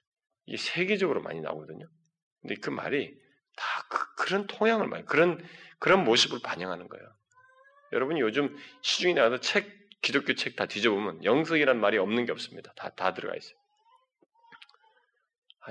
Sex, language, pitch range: male, Korean, 130-210 Hz